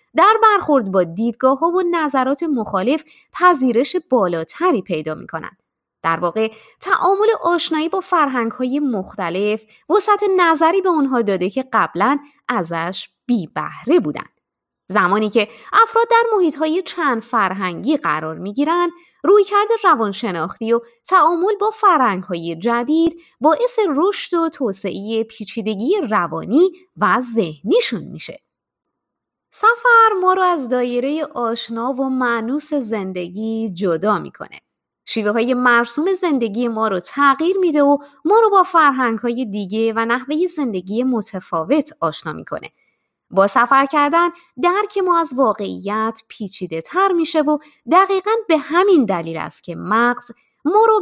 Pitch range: 220-345 Hz